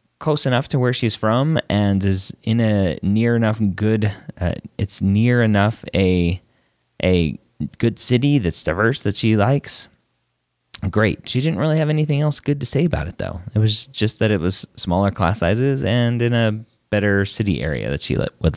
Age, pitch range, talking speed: 30-49, 80-115 Hz, 185 wpm